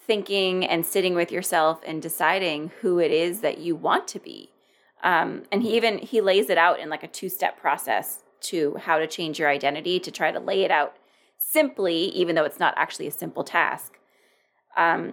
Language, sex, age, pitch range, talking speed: English, female, 20-39, 170-205 Hz, 200 wpm